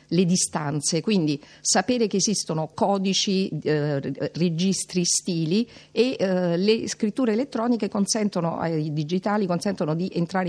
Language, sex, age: Italian, female, 50-69